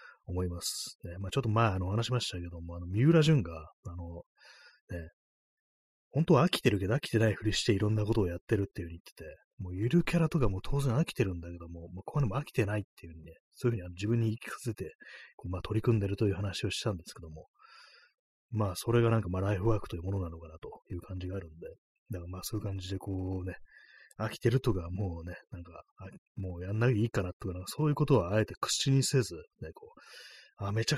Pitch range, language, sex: 90-125 Hz, Japanese, male